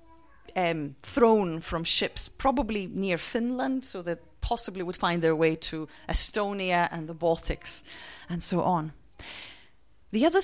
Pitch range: 165-225 Hz